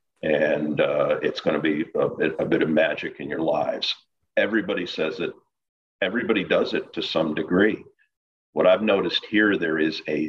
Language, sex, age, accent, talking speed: English, male, 50-69, American, 180 wpm